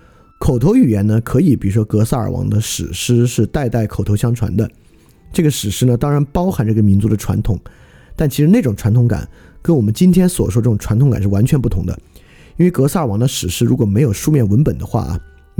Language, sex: Chinese, male